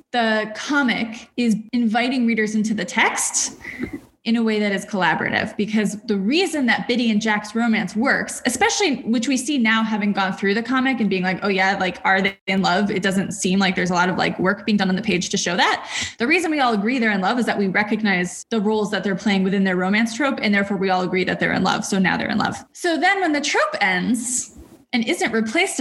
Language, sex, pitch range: English, female, 200-250 Hz